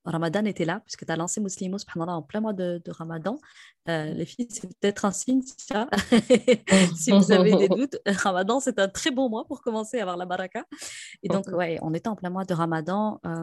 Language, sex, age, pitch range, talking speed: French, female, 20-39, 165-195 Hz, 230 wpm